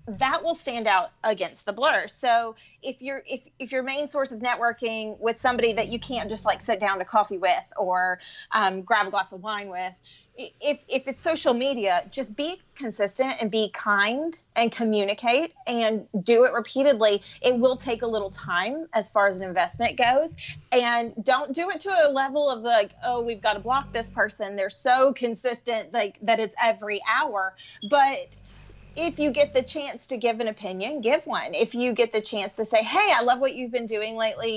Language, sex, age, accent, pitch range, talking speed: English, female, 30-49, American, 210-265 Hz, 205 wpm